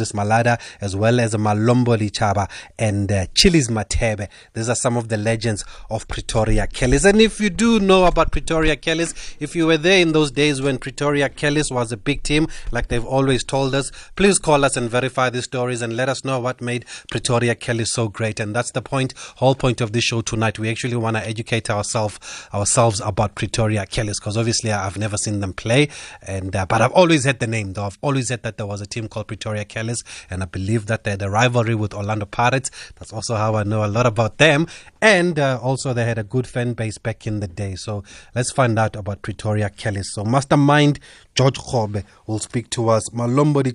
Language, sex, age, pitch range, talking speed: English, male, 30-49, 110-140 Hz, 220 wpm